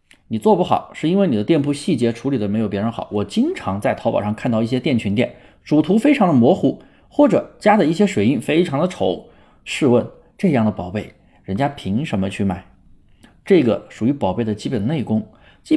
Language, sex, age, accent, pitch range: Chinese, male, 20-39, native, 110-170 Hz